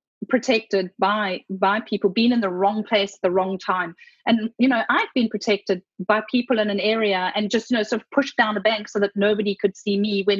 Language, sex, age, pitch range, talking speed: English, female, 30-49, 205-265 Hz, 235 wpm